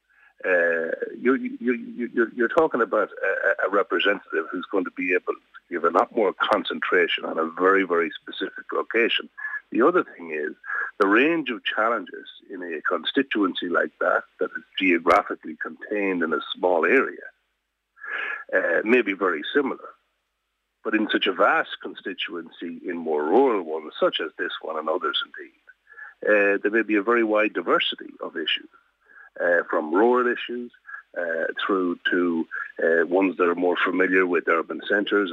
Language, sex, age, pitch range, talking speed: English, male, 60-79, 285-450 Hz, 160 wpm